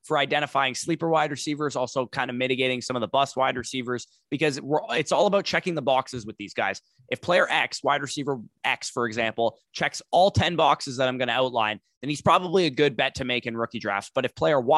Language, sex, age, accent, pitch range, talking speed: English, male, 20-39, American, 115-140 Hz, 225 wpm